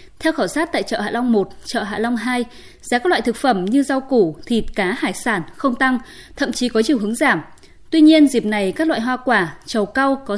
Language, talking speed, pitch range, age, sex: Vietnamese, 250 wpm, 210-295 Hz, 20-39, female